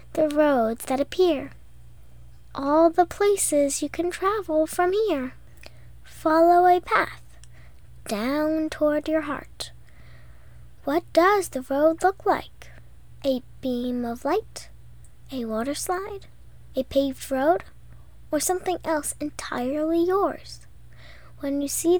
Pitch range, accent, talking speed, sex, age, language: 230-335 Hz, American, 115 wpm, female, 10-29, English